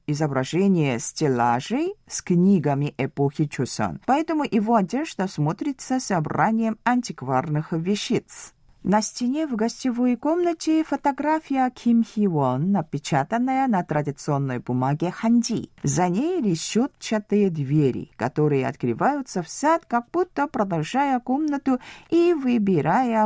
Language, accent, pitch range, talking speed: Russian, native, 160-260 Hz, 105 wpm